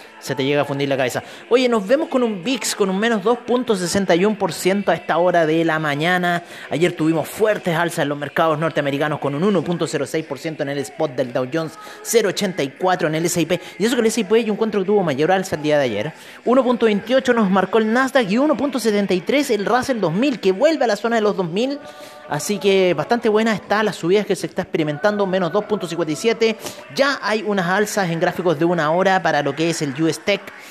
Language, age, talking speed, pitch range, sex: Spanish, 30-49, 205 wpm, 155-220 Hz, male